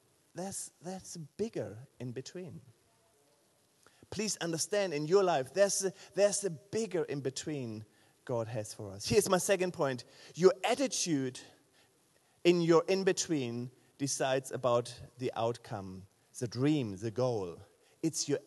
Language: English